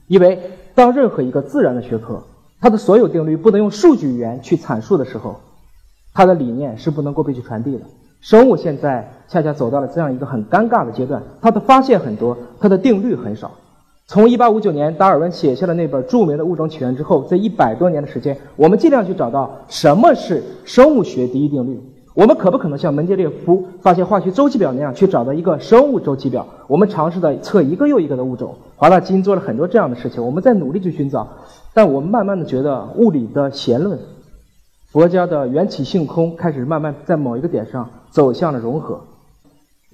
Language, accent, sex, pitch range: Chinese, native, male, 135-195 Hz